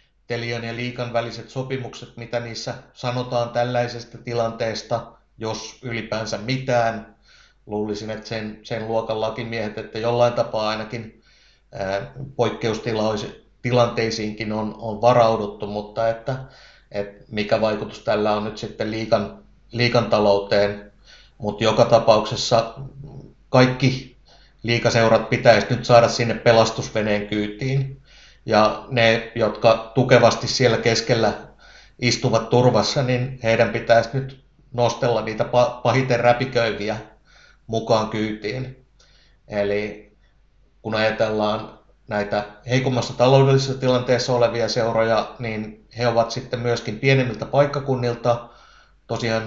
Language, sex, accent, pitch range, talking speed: Finnish, male, native, 110-125 Hz, 100 wpm